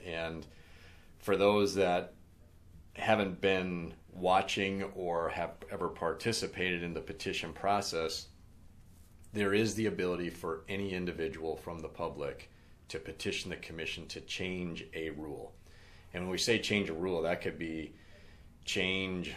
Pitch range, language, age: 80-95 Hz, English, 40-59